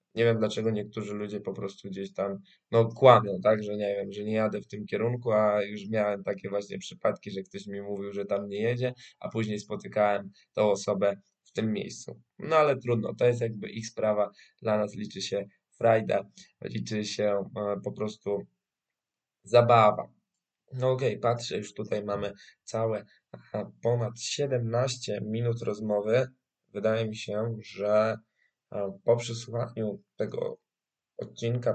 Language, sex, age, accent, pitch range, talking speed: Polish, male, 20-39, native, 105-115 Hz, 155 wpm